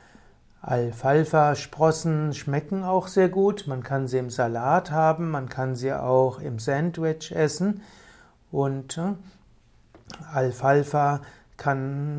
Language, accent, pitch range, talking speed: German, German, 130-165 Hz, 105 wpm